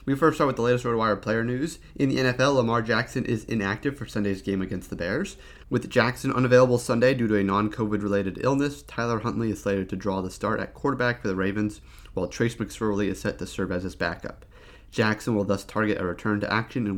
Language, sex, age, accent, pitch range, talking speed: English, male, 30-49, American, 100-125 Hz, 225 wpm